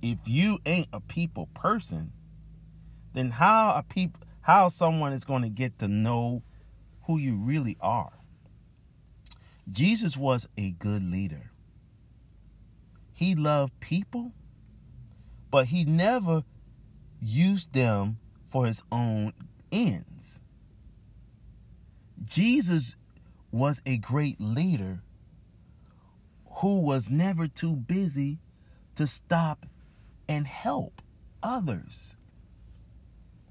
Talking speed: 95 wpm